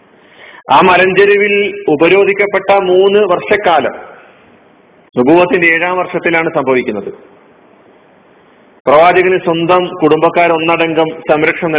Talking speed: 65 wpm